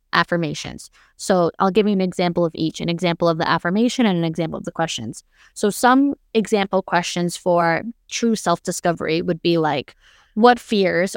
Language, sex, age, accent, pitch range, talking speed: English, female, 20-39, American, 170-210 Hz, 170 wpm